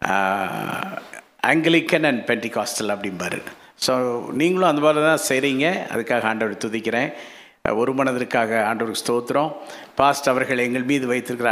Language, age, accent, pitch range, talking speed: Tamil, 50-69, native, 115-150 Hz, 115 wpm